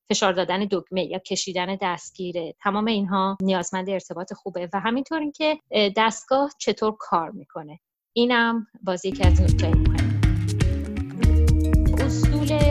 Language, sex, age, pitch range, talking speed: Persian, female, 30-49, 180-210 Hz, 120 wpm